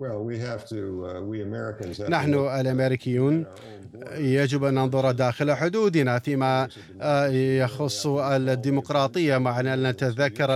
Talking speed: 75 wpm